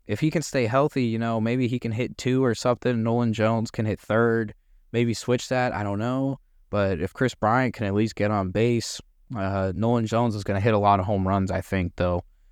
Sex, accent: male, American